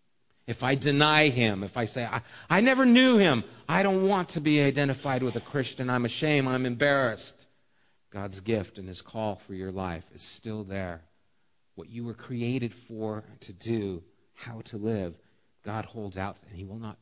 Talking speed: 185 wpm